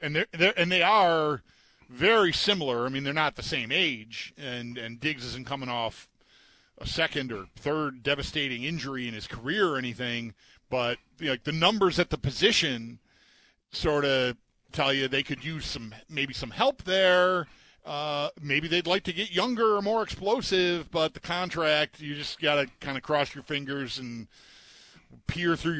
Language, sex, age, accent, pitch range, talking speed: English, male, 40-59, American, 125-165 Hz, 180 wpm